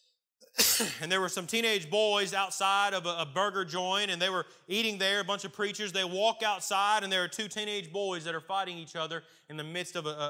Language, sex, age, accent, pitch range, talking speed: English, male, 30-49, American, 170-215 Hz, 235 wpm